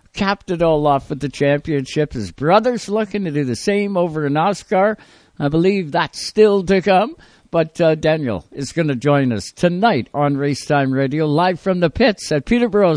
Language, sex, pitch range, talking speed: English, male, 140-200 Hz, 195 wpm